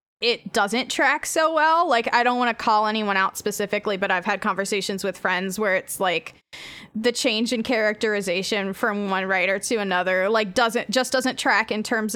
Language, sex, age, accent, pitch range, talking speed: English, female, 10-29, American, 195-235 Hz, 190 wpm